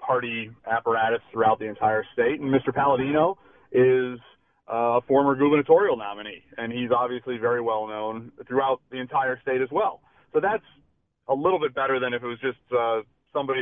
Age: 30-49